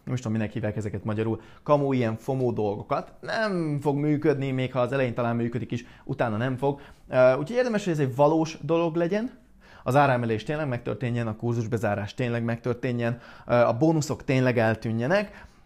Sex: male